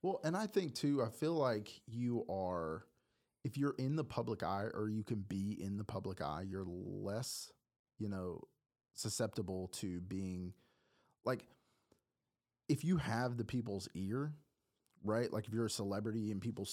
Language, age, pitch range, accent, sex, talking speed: English, 30-49, 100-130 Hz, American, male, 165 wpm